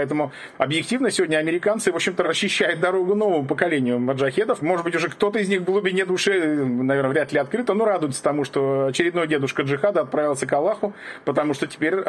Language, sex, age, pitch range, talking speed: Russian, male, 40-59, 140-185 Hz, 185 wpm